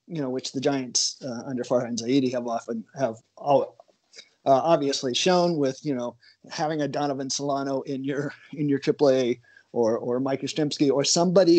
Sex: male